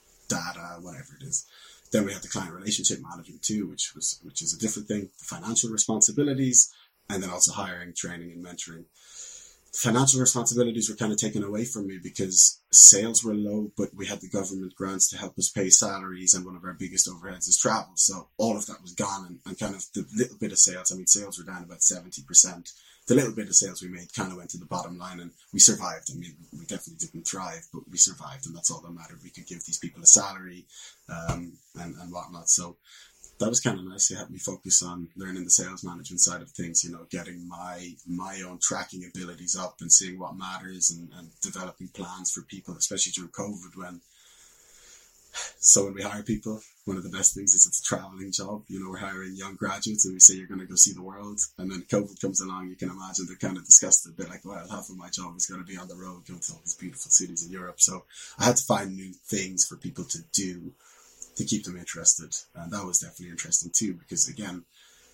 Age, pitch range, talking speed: 20-39, 90-100 Hz, 235 wpm